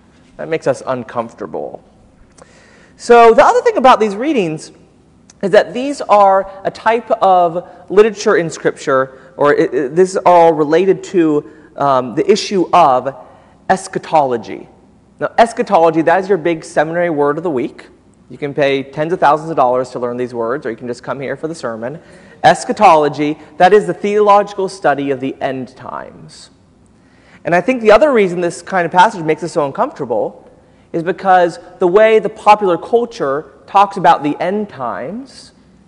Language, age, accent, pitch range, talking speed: English, 30-49, American, 135-195 Hz, 165 wpm